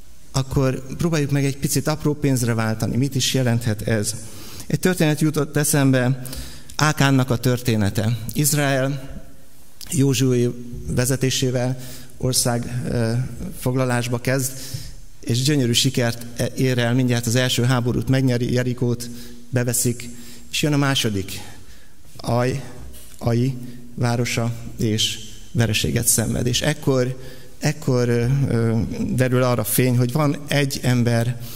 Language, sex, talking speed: Hungarian, male, 110 wpm